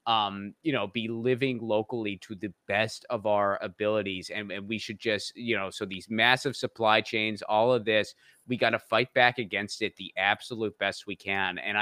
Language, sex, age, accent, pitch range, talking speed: English, male, 20-39, American, 105-125 Hz, 205 wpm